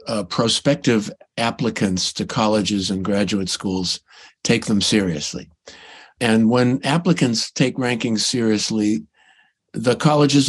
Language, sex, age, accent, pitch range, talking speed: English, male, 50-69, American, 110-145 Hz, 110 wpm